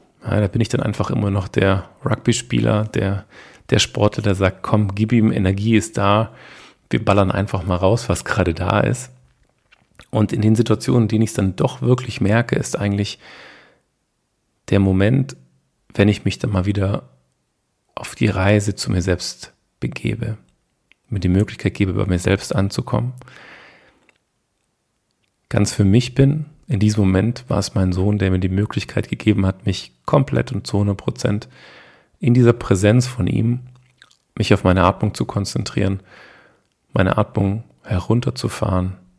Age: 40-59